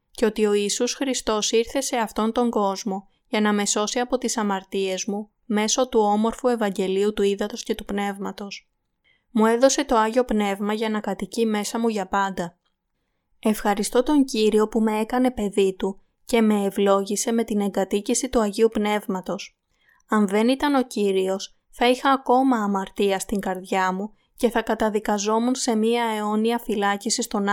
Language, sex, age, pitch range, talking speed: Greek, female, 20-39, 195-235 Hz, 165 wpm